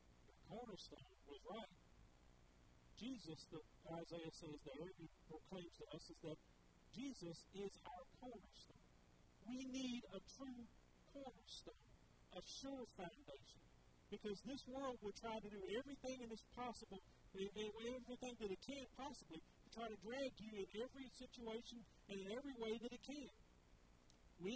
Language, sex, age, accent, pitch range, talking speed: English, male, 50-69, American, 190-245 Hz, 145 wpm